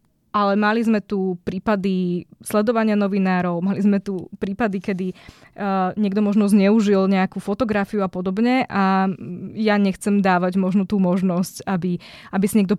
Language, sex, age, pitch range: Czech, female, 20-39, 185-215 Hz